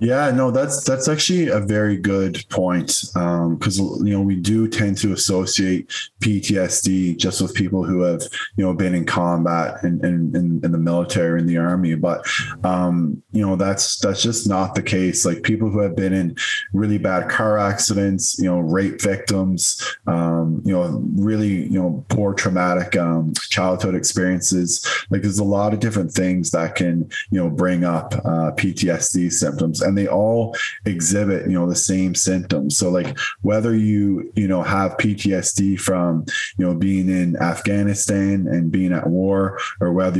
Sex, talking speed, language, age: male, 180 wpm, English, 20-39